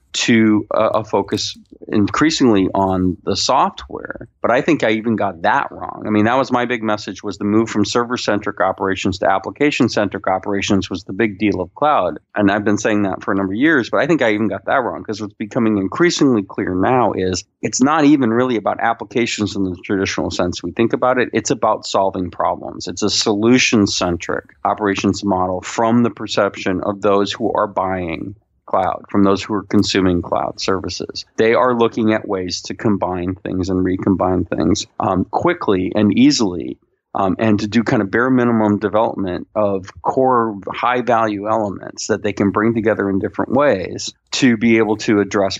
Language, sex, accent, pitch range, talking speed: English, male, American, 95-115 Hz, 190 wpm